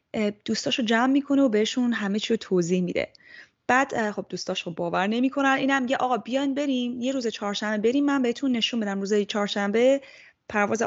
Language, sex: Persian, female